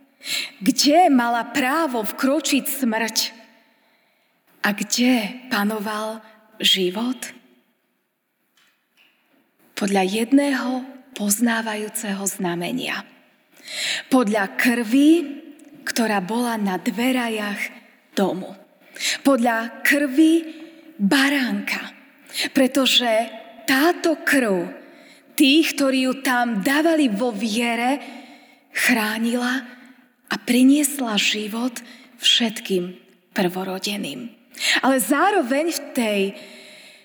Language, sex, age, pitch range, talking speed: Slovak, female, 20-39, 225-280 Hz, 70 wpm